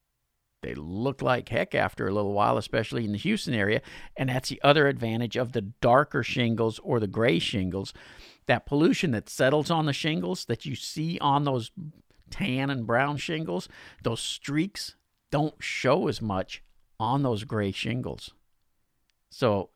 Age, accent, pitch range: 50-69, American, 105-145 Hz